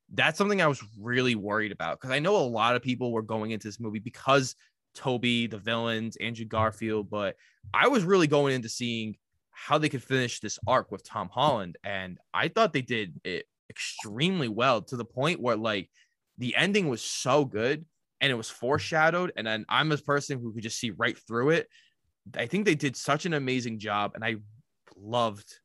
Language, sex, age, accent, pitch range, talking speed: English, male, 20-39, American, 110-145 Hz, 200 wpm